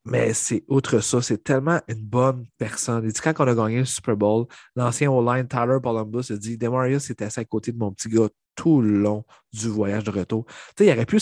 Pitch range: 105-120 Hz